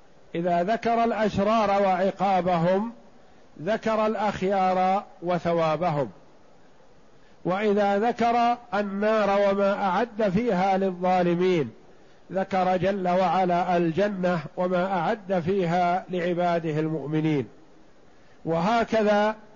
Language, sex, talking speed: Arabic, male, 75 wpm